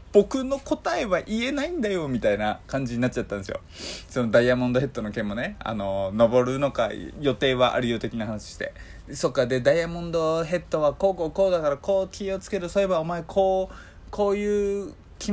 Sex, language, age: male, Japanese, 20-39